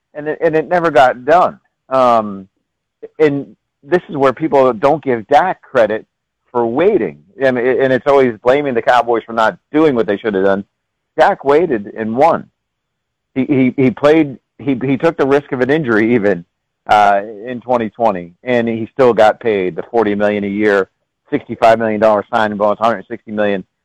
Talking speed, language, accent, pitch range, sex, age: 180 wpm, English, American, 105-135 Hz, male, 50-69